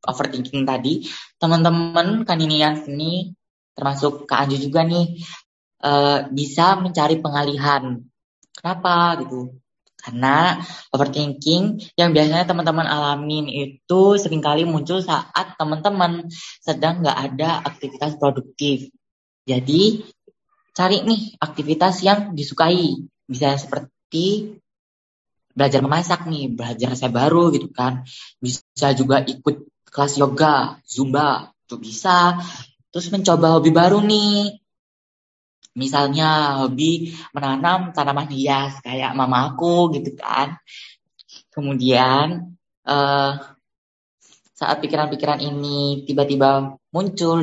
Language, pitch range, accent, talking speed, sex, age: Indonesian, 135-170 Hz, native, 100 wpm, female, 10-29